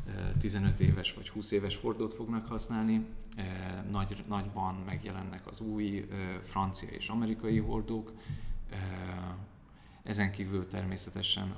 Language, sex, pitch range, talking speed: Hungarian, male, 90-105 Hz, 105 wpm